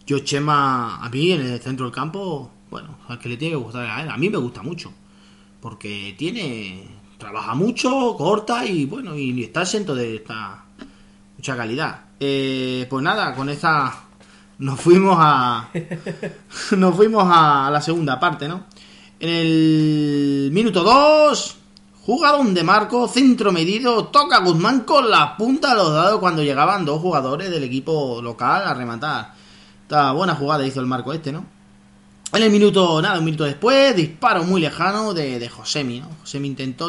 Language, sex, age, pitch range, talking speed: Spanish, male, 30-49, 135-185 Hz, 165 wpm